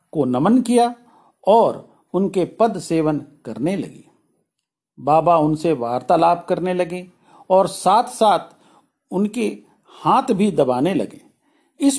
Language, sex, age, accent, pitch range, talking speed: Hindi, male, 50-69, native, 160-225 Hz, 115 wpm